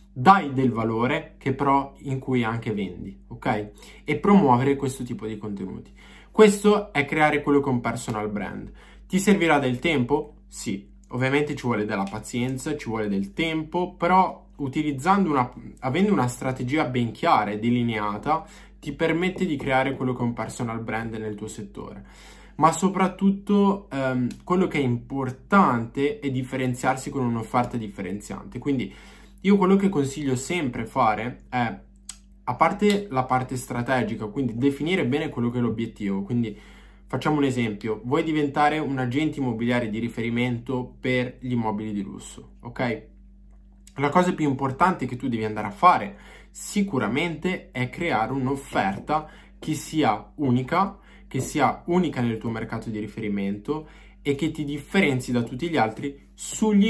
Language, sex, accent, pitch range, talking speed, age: Italian, male, native, 115-155 Hz, 155 wpm, 20-39